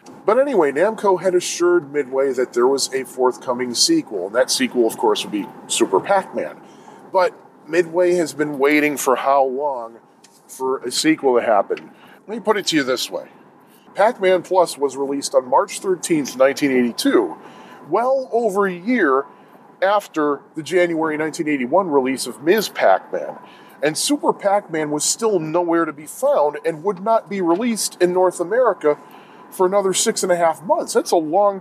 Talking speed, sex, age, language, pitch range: 170 wpm, male, 40-59, English, 165-245 Hz